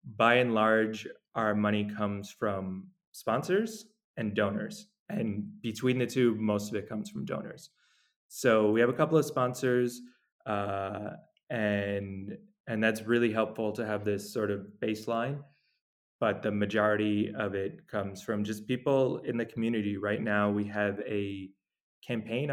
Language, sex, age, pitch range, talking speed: English, male, 20-39, 100-120 Hz, 150 wpm